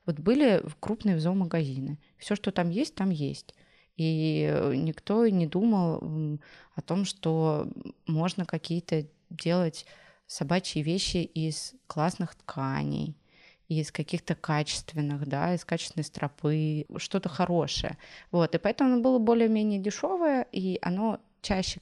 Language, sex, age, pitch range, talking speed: Russian, female, 20-39, 160-195 Hz, 125 wpm